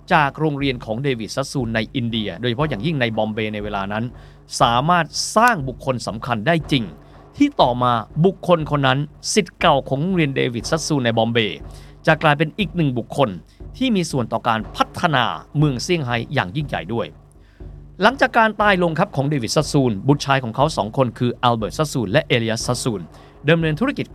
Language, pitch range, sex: Thai, 120-175 Hz, male